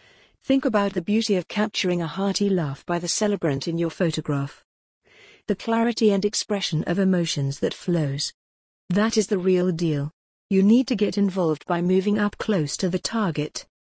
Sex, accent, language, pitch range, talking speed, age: female, British, English, 165-205 Hz, 175 wpm, 50-69